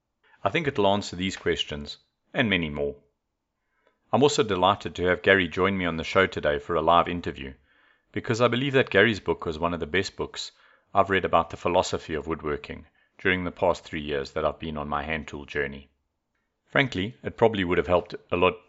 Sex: male